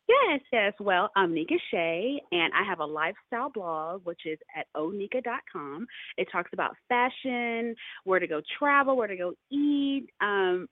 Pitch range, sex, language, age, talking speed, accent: 185-290 Hz, female, English, 30-49, 160 wpm, American